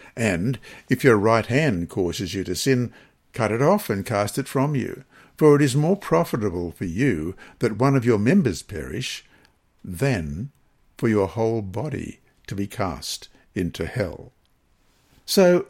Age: 60-79